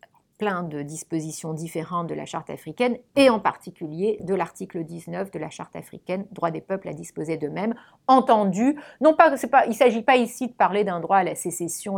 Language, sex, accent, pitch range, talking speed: English, female, French, 170-230 Hz, 200 wpm